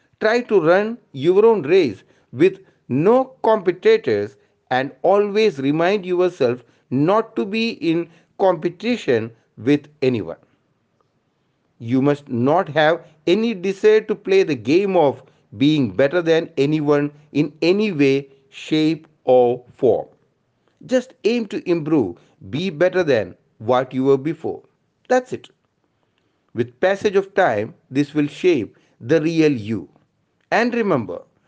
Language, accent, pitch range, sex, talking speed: English, Indian, 135-210 Hz, male, 125 wpm